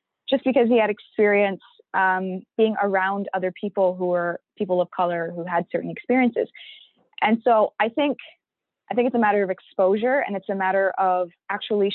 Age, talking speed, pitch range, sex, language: 20-39, 180 wpm, 185-220 Hz, female, English